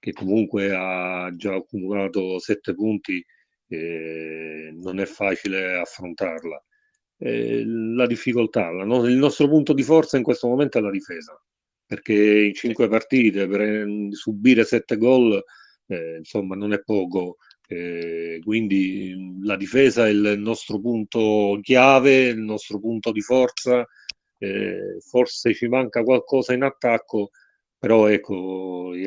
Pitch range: 95-115 Hz